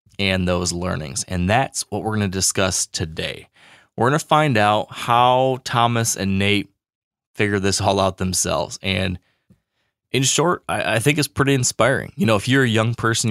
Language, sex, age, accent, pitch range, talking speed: English, male, 20-39, American, 100-115 Hz, 180 wpm